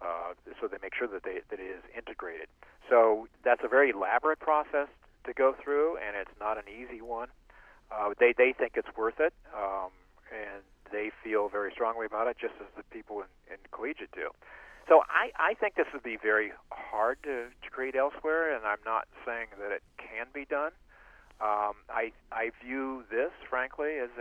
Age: 50-69